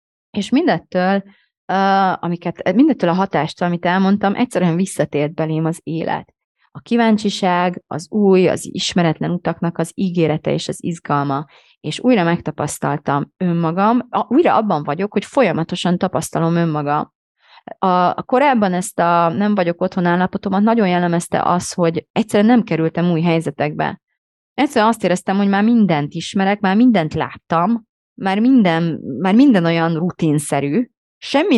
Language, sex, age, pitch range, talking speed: Hungarian, female, 30-49, 165-210 Hz, 130 wpm